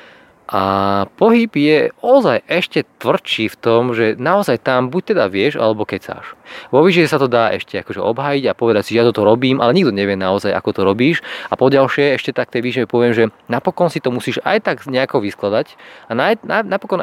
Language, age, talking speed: Slovak, 20-39, 210 wpm